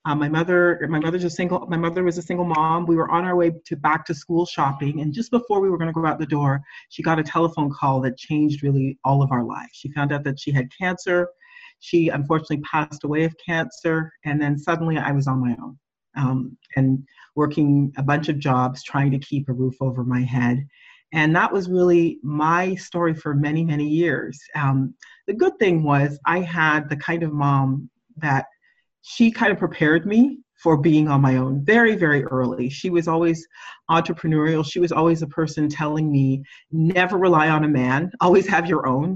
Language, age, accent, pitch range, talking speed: English, 40-59, American, 140-175 Hz, 210 wpm